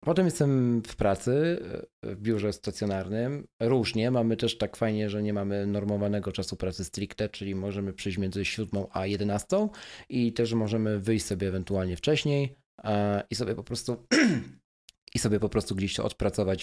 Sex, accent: male, native